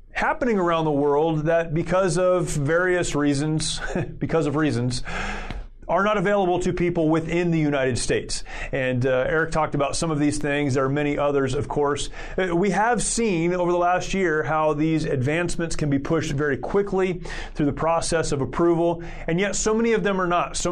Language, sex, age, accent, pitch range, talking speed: English, male, 30-49, American, 150-180 Hz, 190 wpm